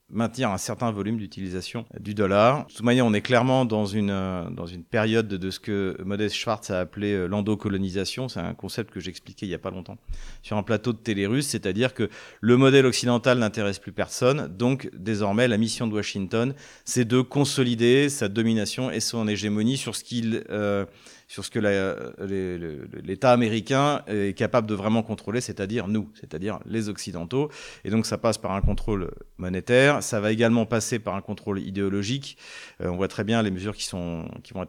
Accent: French